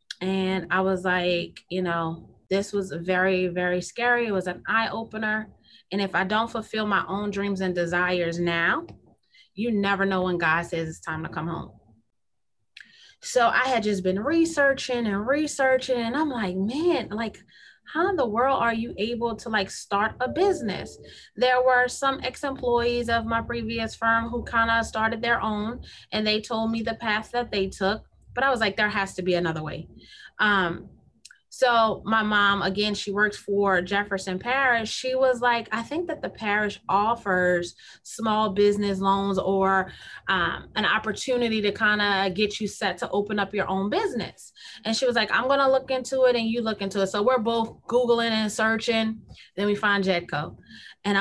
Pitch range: 190-240 Hz